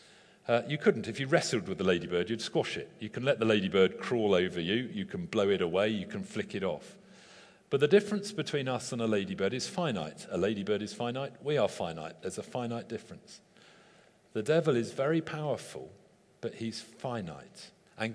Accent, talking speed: British, 200 wpm